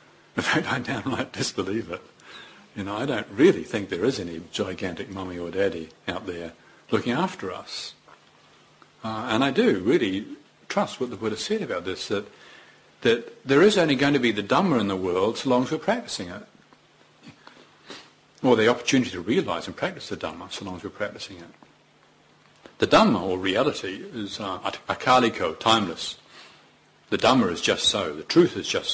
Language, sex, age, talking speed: English, male, 50-69, 175 wpm